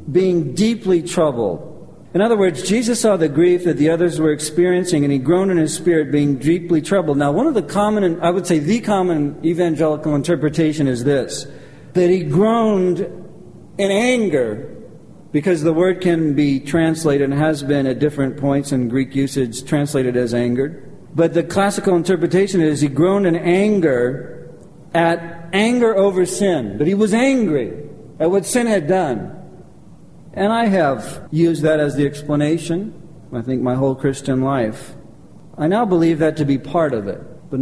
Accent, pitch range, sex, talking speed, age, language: American, 140-180 Hz, male, 170 wpm, 50-69, English